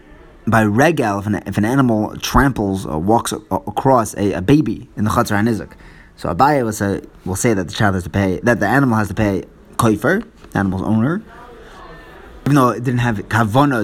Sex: male